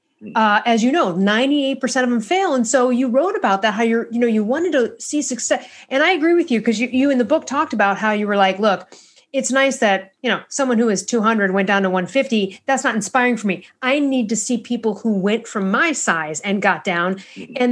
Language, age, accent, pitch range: English, 40-59, American, 200-270 Hz